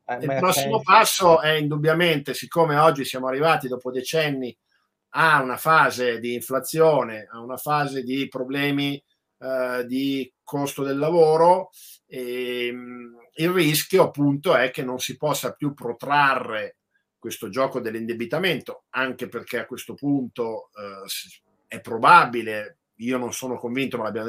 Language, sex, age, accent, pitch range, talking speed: Italian, male, 50-69, native, 120-145 Hz, 135 wpm